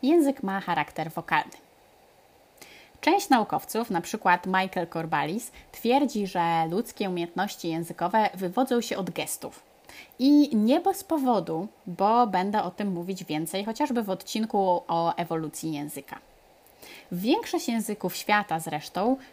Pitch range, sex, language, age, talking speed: 175-235 Hz, female, Polish, 20-39, 120 wpm